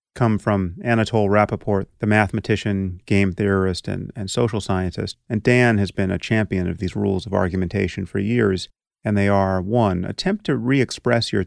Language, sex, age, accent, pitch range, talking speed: English, male, 30-49, American, 95-120 Hz, 175 wpm